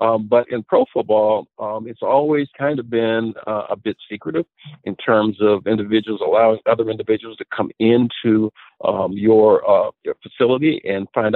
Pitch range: 105-130 Hz